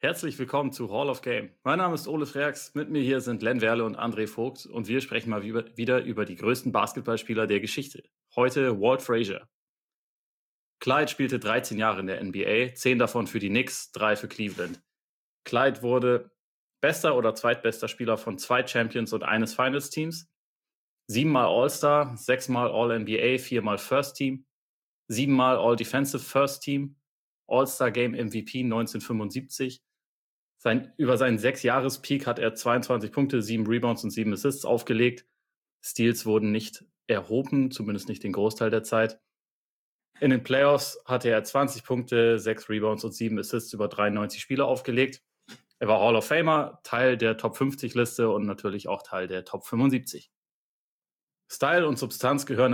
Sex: male